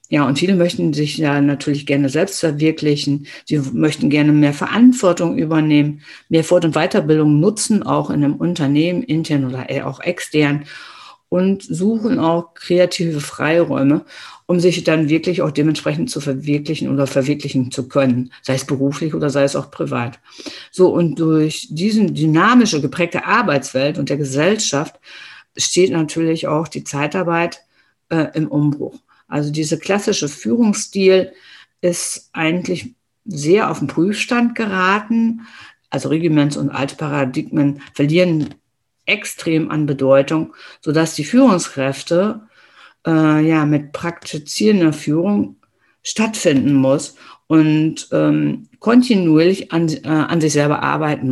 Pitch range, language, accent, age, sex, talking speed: 145-175 Hz, German, German, 50-69, female, 130 wpm